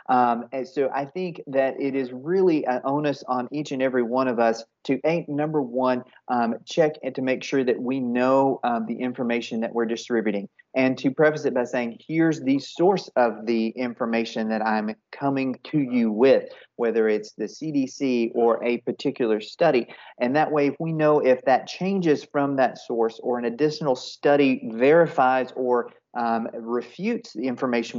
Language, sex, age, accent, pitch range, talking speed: English, male, 40-59, American, 120-145 Hz, 180 wpm